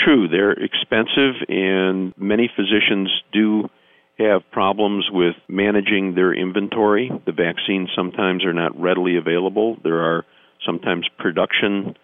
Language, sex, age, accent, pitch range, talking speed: English, male, 50-69, American, 80-100 Hz, 120 wpm